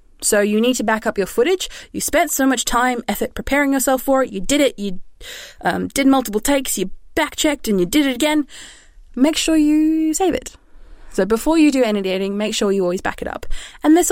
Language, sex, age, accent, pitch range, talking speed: English, female, 20-39, Australian, 180-255 Hz, 230 wpm